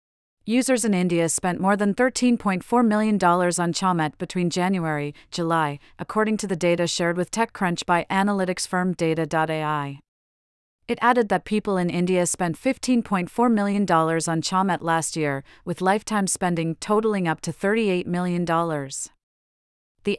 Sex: female